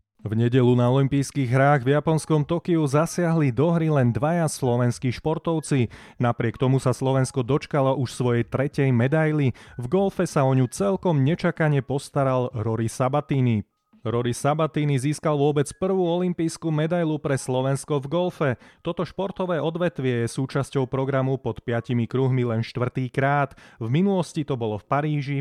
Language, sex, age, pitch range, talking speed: Slovak, male, 30-49, 120-155 Hz, 150 wpm